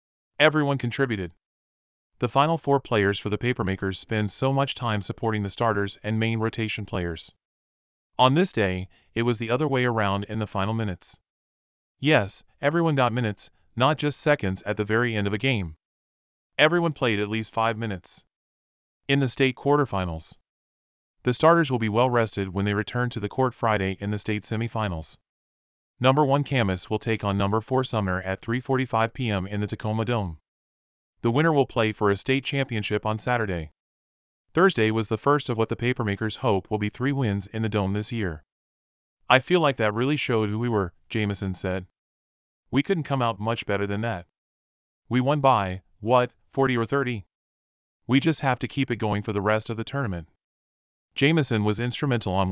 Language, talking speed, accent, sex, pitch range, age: English, 185 wpm, American, male, 95-125 Hz, 30-49